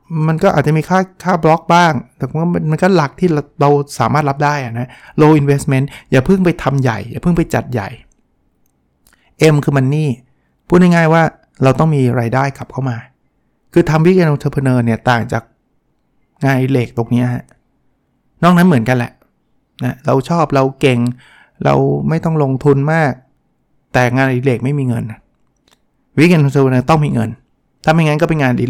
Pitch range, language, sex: 120-155 Hz, Thai, male